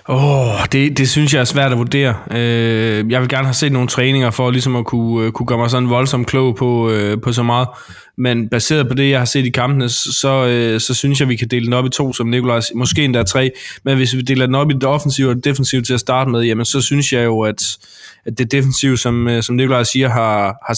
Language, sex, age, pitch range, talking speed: Danish, male, 20-39, 115-130 Hz, 250 wpm